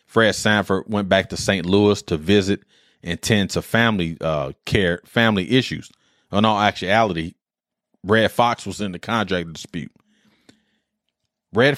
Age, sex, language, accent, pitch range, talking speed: 30-49, male, English, American, 95-120 Hz, 145 wpm